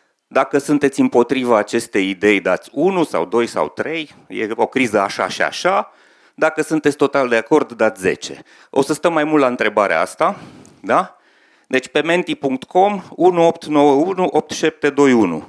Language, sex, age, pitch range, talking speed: Romanian, male, 40-59, 115-155 Hz, 145 wpm